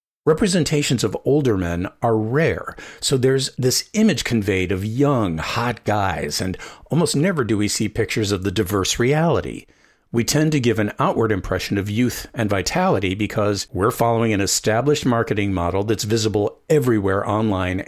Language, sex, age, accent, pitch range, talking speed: English, male, 50-69, American, 100-125 Hz, 160 wpm